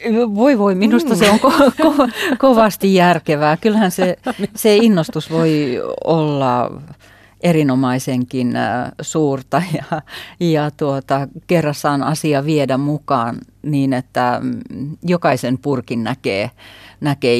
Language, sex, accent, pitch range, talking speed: Finnish, female, native, 115-145 Hz, 95 wpm